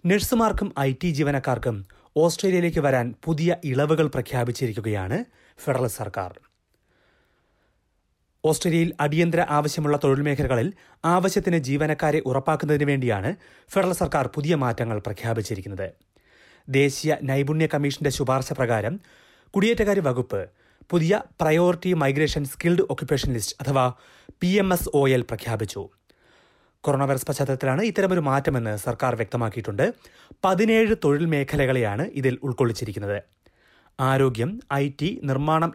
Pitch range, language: 125-165 Hz, Malayalam